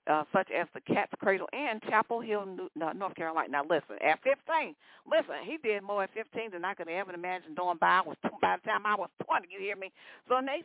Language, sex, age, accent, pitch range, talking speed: English, female, 50-69, American, 175-230 Hz, 225 wpm